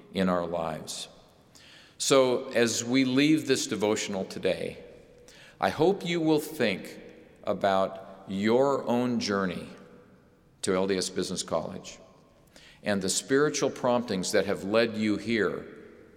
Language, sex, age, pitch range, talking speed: English, male, 50-69, 95-125 Hz, 120 wpm